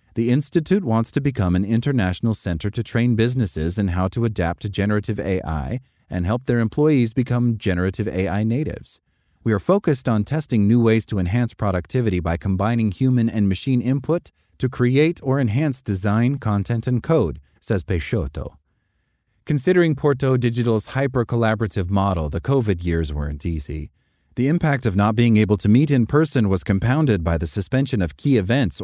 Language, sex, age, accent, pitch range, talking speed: English, male, 30-49, American, 90-125 Hz, 165 wpm